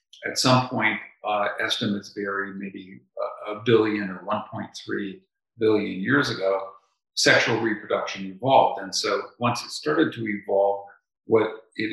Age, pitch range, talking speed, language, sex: 50-69, 95-115 Hz, 135 wpm, English, male